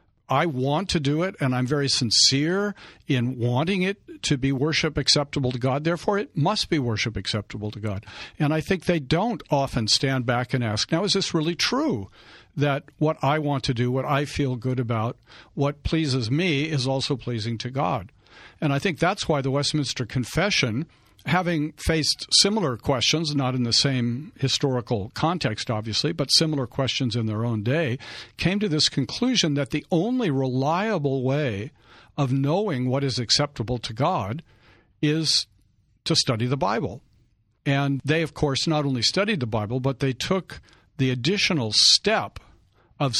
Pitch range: 120-155 Hz